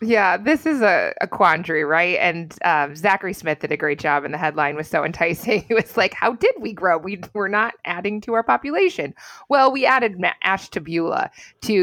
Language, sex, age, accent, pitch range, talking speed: English, female, 20-39, American, 155-210 Hz, 205 wpm